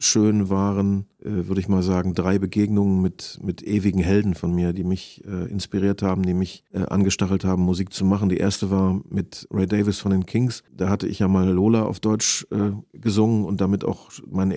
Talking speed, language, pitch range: 210 wpm, German, 95-105 Hz